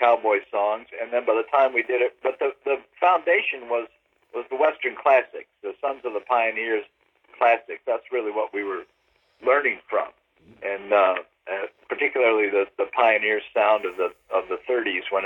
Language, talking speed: English, 180 wpm